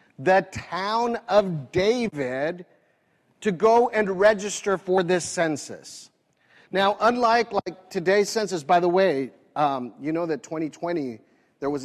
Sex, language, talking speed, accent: male, English, 130 wpm, American